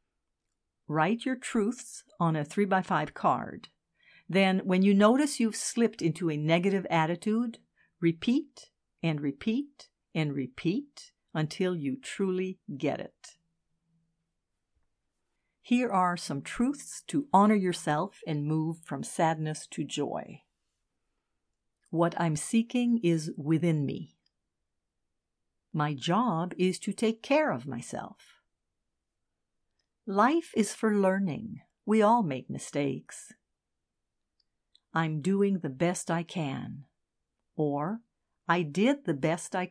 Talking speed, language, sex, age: 115 wpm, English, female, 50-69